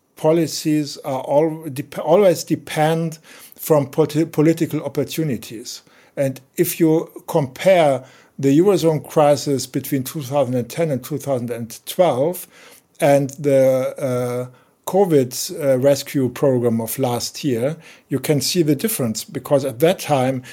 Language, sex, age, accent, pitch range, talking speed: Dutch, male, 50-69, German, 125-155 Hz, 115 wpm